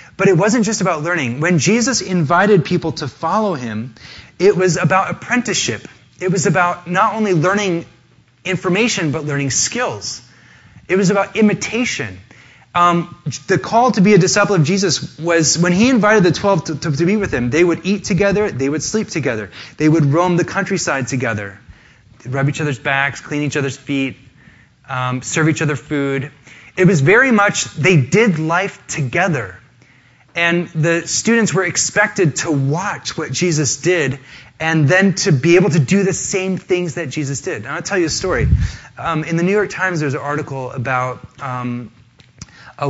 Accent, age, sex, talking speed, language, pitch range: American, 20-39, male, 180 wpm, English, 125-180 Hz